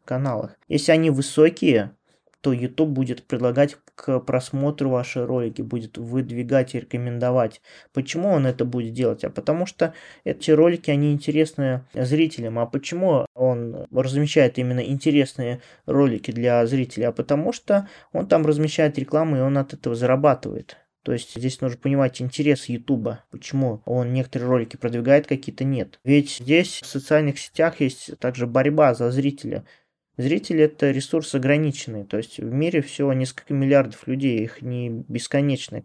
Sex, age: male, 20-39